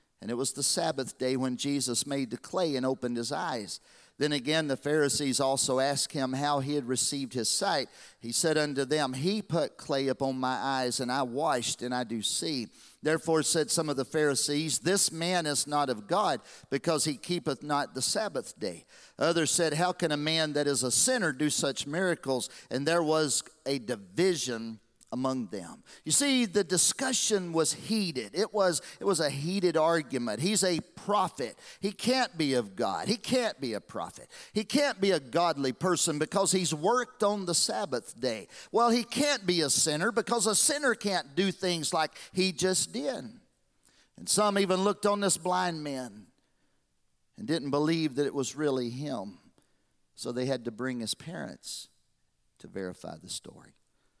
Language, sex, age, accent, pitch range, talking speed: English, male, 50-69, American, 135-185 Hz, 185 wpm